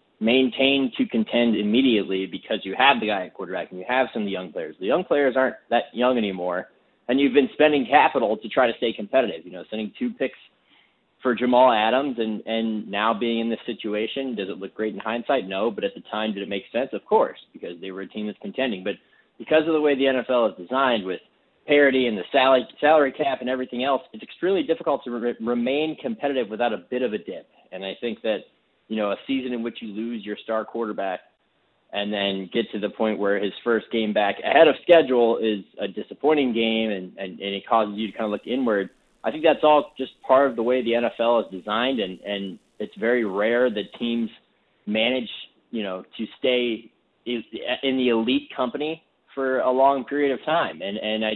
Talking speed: 220 wpm